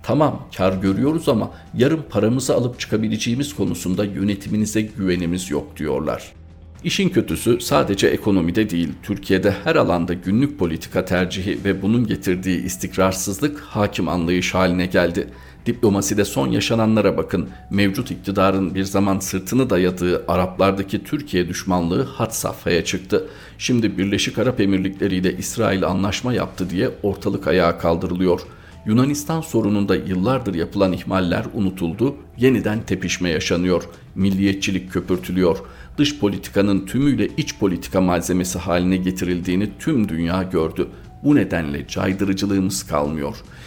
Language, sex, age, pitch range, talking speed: Turkish, male, 50-69, 90-105 Hz, 120 wpm